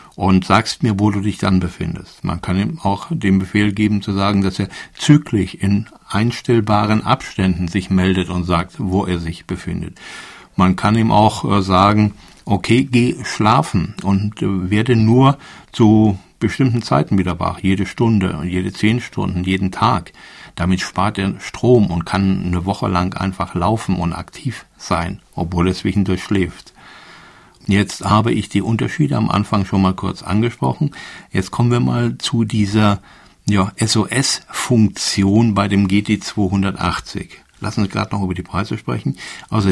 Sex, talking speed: male, 160 wpm